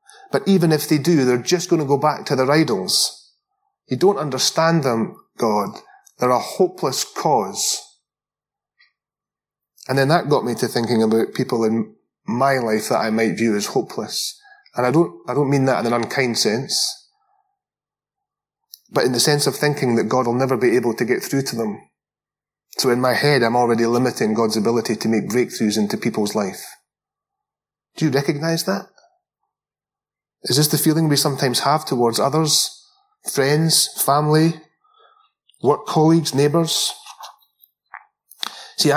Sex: male